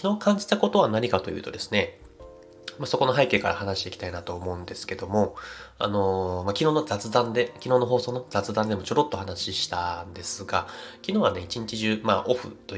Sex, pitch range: male, 100-125 Hz